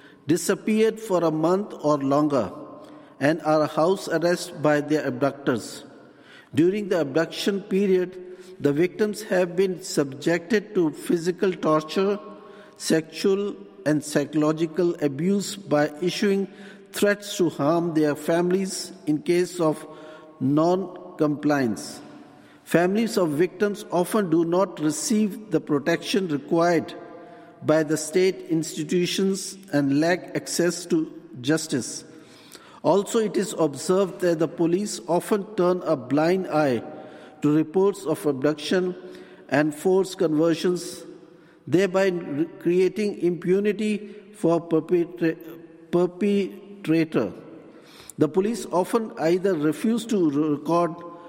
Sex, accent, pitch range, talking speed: male, Indian, 155-190 Hz, 105 wpm